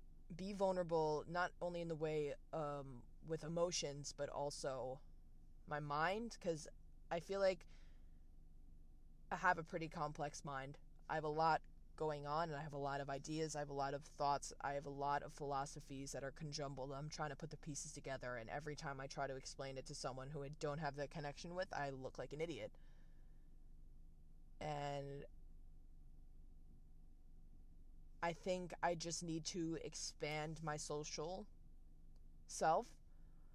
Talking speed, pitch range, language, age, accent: 165 wpm, 135-165 Hz, English, 20-39, American